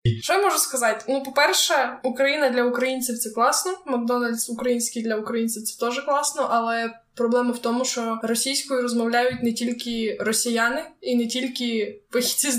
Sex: female